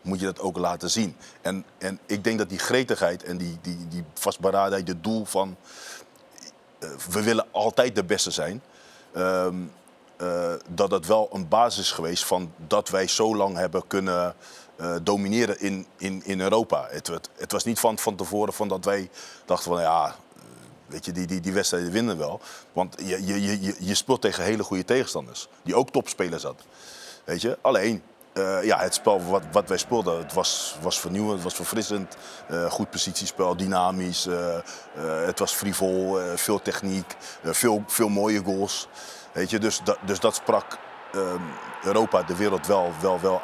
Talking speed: 185 wpm